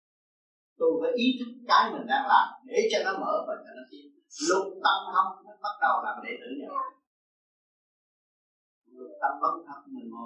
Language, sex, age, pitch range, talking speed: Vietnamese, male, 30-49, 240-365 Hz, 150 wpm